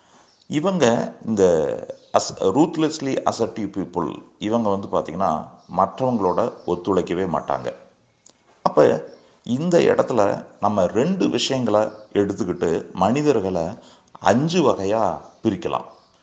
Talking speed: 85 wpm